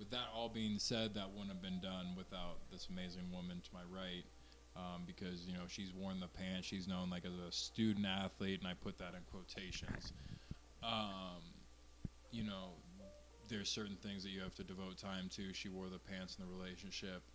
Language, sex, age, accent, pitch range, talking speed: English, male, 20-39, American, 90-100 Hz, 200 wpm